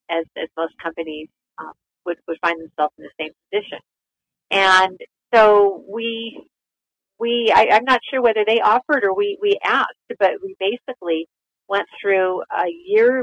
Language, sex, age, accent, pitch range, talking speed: English, female, 50-69, American, 165-210 Hz, 160 wpm